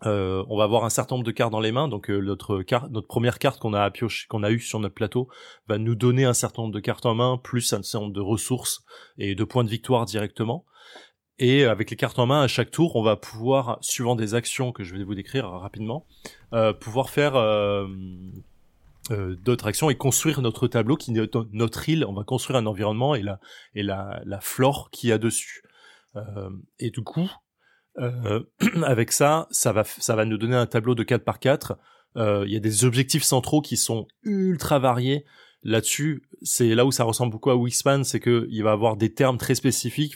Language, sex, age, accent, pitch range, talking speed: French, male, 20-39, French, 110-130 Hz, 220 wpm